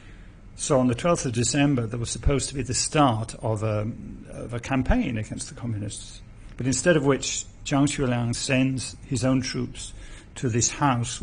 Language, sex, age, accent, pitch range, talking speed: English, male, 50-69, British, 110-130 Hz, 180 wpm